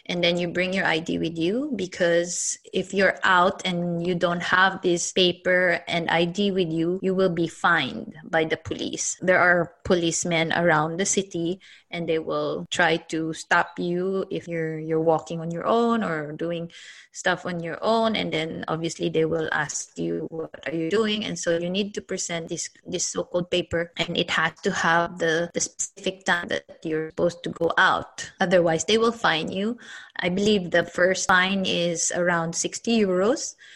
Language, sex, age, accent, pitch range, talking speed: English, female, 20-39, Filipino, 165-190 Hz, 185 wpm